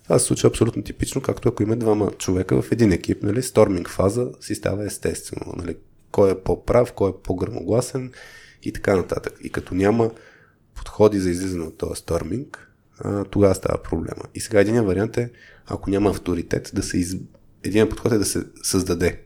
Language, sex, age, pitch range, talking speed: Bulgarian, male, 20-39, 90-105 Hz, 180 wpm